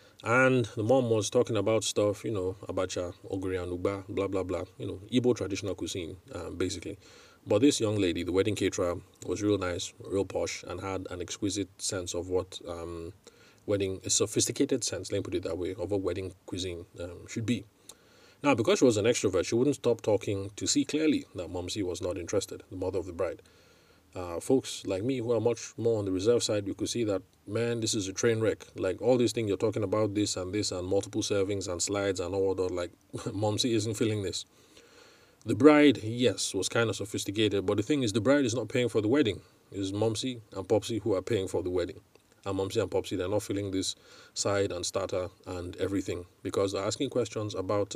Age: 30-49